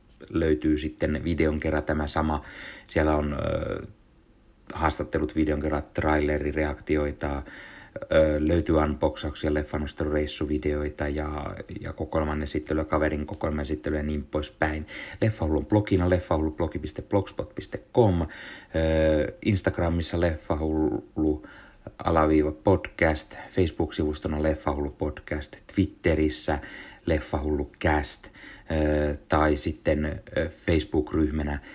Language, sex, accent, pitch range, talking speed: Finnish, male, native, 75-80 Hz, 85 wpm